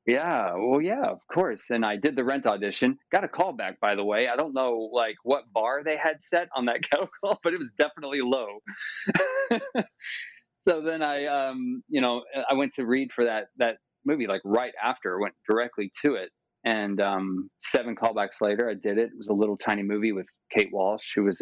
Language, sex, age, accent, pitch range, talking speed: English, male, 30-49, American, 105-135 Hz, 205 wpm